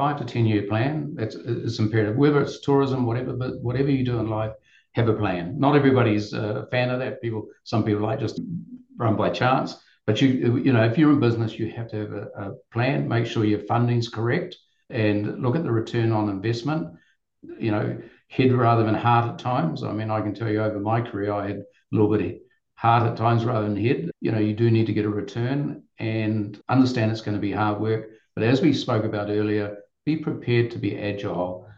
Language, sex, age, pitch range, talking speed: English, male, 50-69, 100-120 Hz, 225 wpm